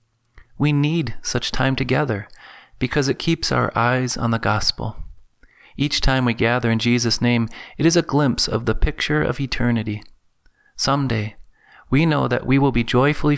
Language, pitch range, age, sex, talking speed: English, 115-135 Hz, 30-49, male, 165 wpm